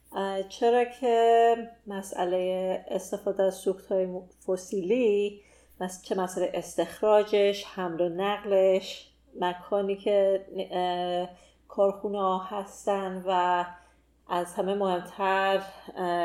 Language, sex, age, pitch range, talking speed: Persian, female, 30-49, 185-220 Hz, 80 wpm